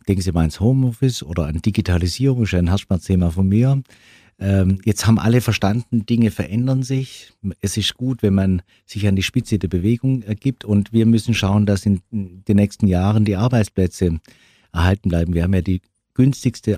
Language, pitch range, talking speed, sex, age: German, 85-110 Hz, 185 wpm, male, 50-69